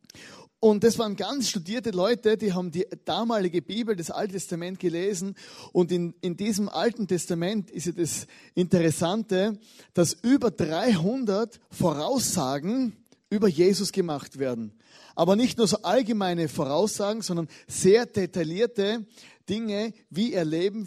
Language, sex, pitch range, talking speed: German, male, 170-215 Hz, 130 wpm